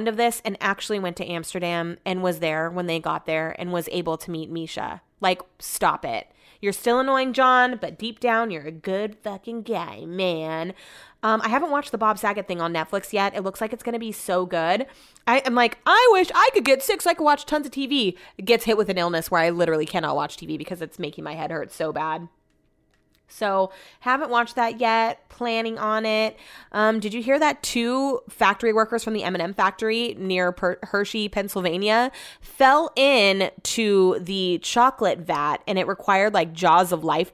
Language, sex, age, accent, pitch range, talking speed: English, female, 20-39, American, 175-235 Hz, 200 wpm